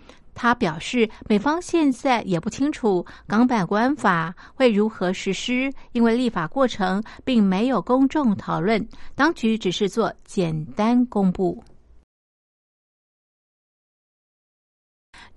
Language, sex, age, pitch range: Chinese, female, 50-69, 190-245 Hz